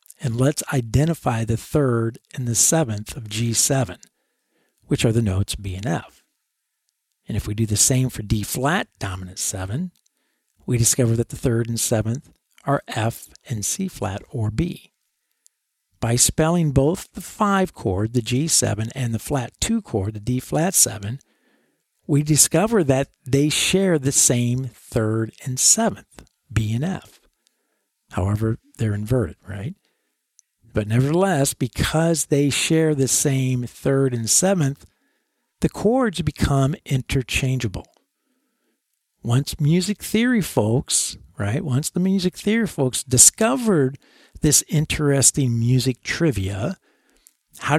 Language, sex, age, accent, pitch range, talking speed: English, male, 50-69, American, 115-155 Hz, 135 wpm